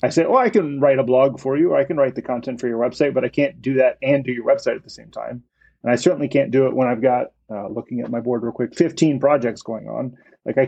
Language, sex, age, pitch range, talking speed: English, male, 30-49, 125-145 Hz, 305 wpm